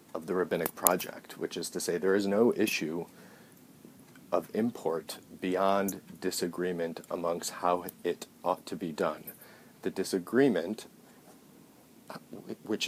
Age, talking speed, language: 40-59, 120 wpm, English